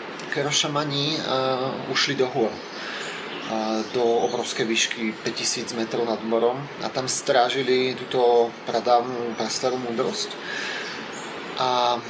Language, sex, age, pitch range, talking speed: Slovak, male, 30-49, 120-140 Hz, 105 wpm